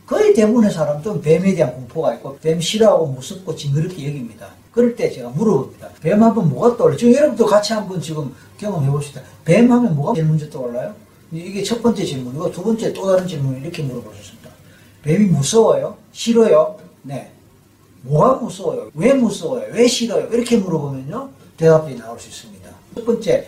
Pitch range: 140-220 Hz